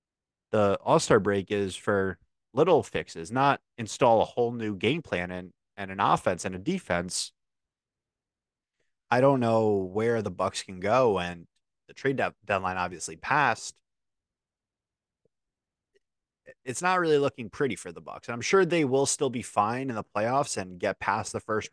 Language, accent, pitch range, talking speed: English, American, 95-135 Hz, 160 wpm